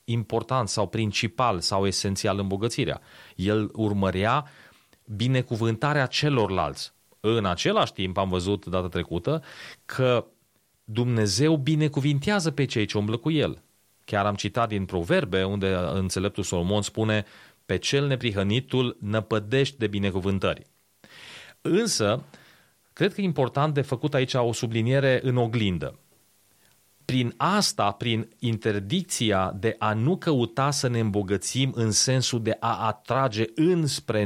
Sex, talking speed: male, 125 wpm